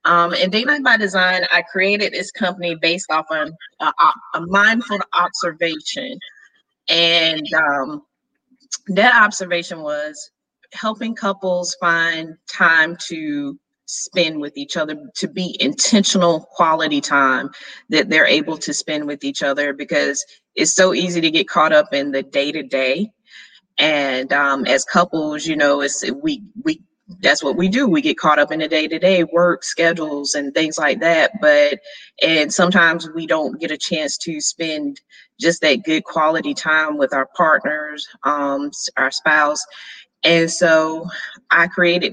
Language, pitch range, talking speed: English, 150-185 Hz, 155 wpm